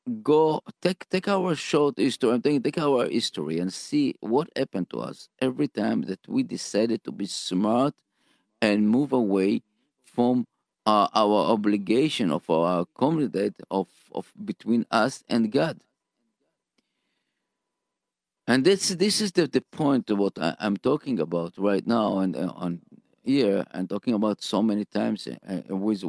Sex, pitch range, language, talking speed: male, 100-135 Hz, English, 155 wpm